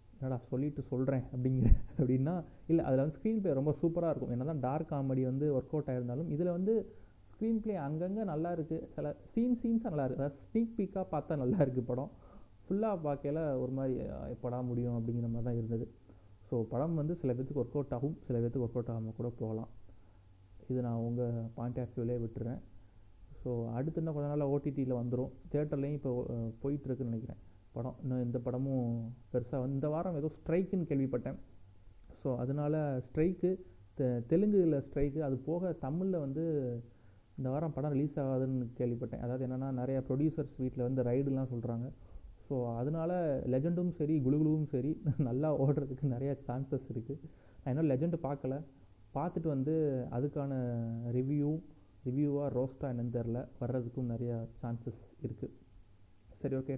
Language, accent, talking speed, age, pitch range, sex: Tamil, native, 155 wpm, 30-49, 120-150 Hz, male